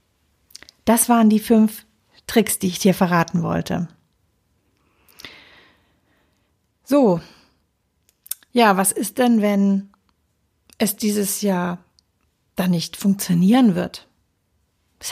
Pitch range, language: 180-245 Hz, German